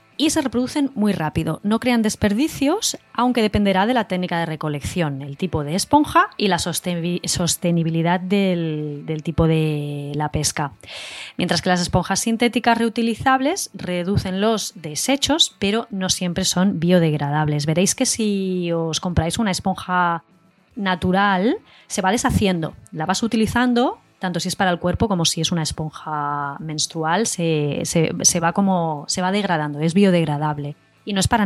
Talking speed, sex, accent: 150 wpm, female, Spanish